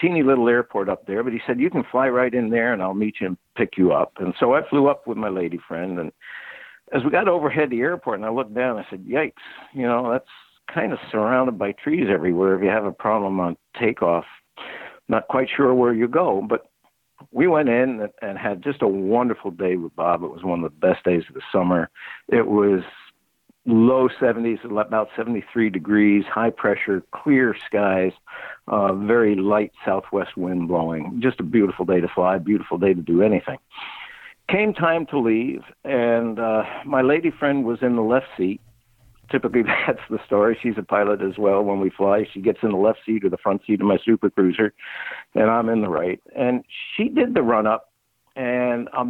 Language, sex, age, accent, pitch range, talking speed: English, male, 60-79, American, 95-125 Hz, 210 wpm